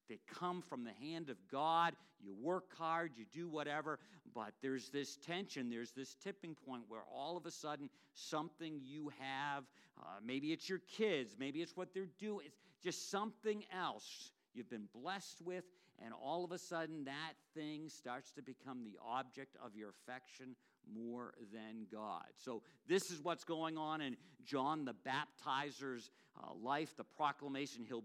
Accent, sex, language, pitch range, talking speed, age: American, male, English, 125-180 Hz, 170 wpm, 50-69